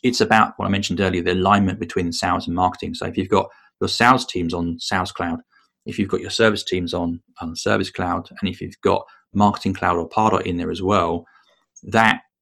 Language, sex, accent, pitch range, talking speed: English, male, British, 85-105 Hz, 215 wpm